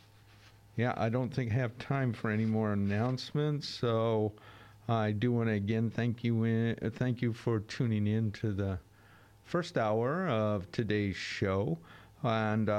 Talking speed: 160 wpm